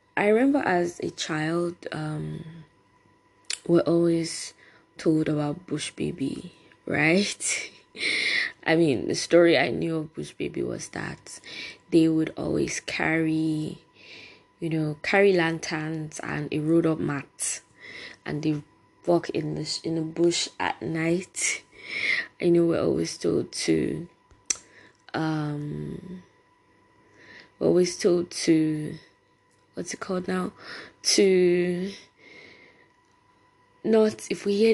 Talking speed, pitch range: 115 wpm, 160-190 Hz